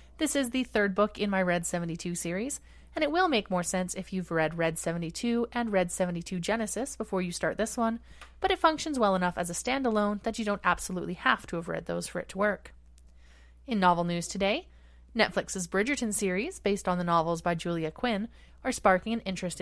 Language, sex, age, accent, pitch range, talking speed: English, female, 30-49, American, 170-225 Hz, 210 wpm